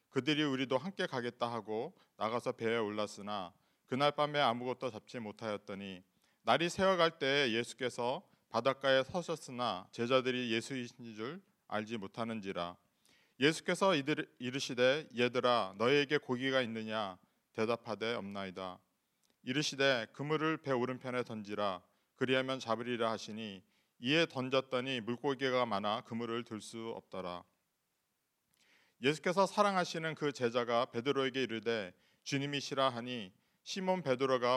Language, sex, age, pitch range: Korean, male, 40-59, 115-140 Hz